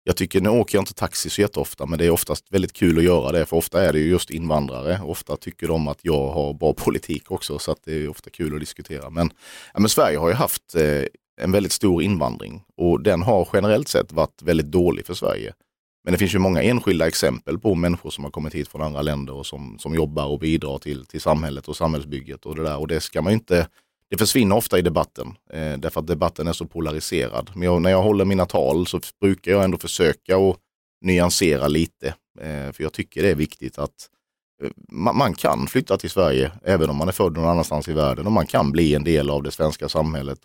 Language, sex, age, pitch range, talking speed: Swedish, male, 30-49, 75-90 Hz, 230 wpm